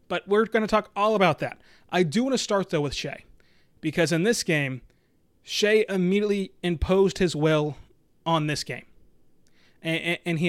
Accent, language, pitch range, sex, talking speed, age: American, English, 150-190 Hz, male, 175 wpm, 30-49